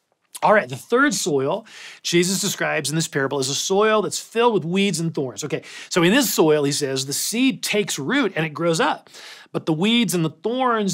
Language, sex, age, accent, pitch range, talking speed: English, male, 40-59, American, 155-220 Hz, 220 wpm